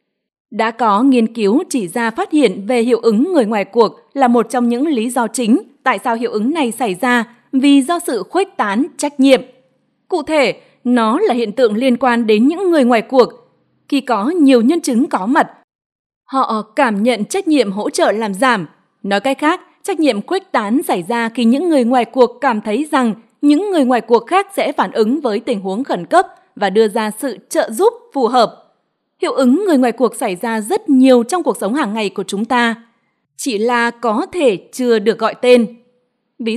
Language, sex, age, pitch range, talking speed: Vietnamese, female, 20-39, 230-285 Hz, 210 wpm